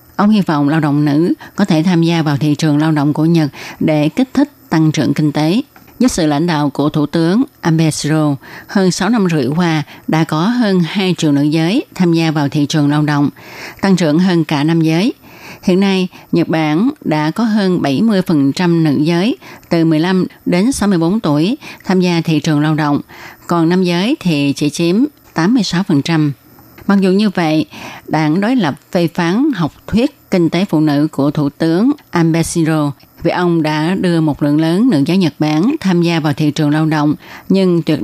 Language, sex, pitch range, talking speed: Vietnamese, female, 150-185 Hz, 195 wpm